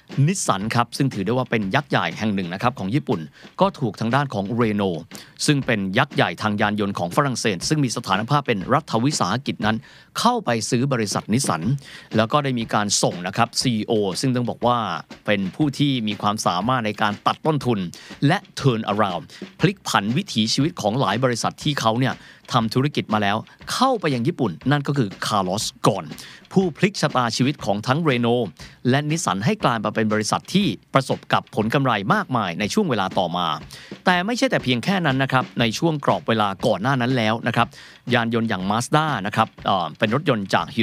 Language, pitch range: Thai, 110-145 Hz